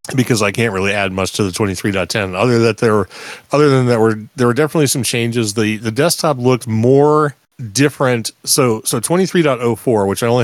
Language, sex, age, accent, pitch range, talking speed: English, male, 40-59, American, 95-125 Hz, 230 wpm